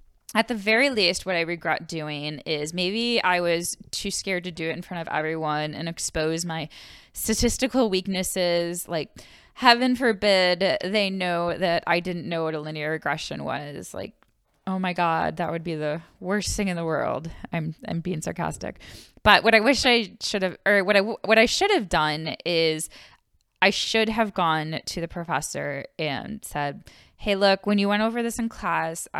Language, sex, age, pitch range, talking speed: English, female, 20-39, 165-220 Hz, 185 wpm